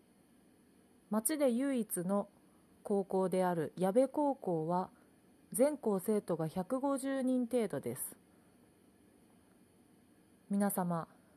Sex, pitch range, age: female, 185-250 Hz, 30-49